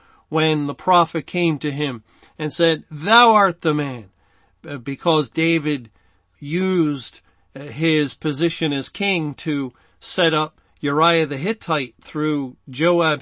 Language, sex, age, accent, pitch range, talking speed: English, male, 40-59, American, 140-175 Hz, 125 wpm